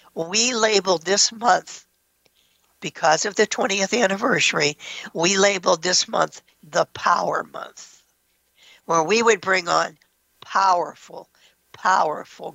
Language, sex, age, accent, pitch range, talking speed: English, female, 60-79, American, 160-205 Hz, 110 wpm